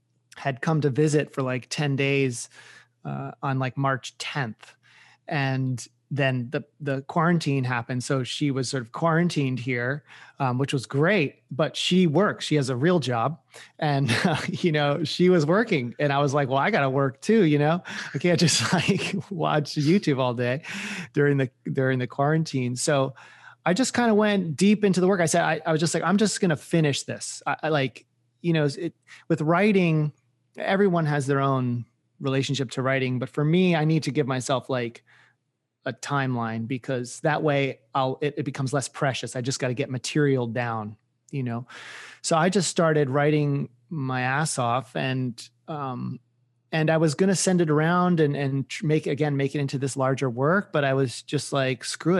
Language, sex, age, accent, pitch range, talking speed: English, male, 30-49, American, 130-160 Hz, 195 wpm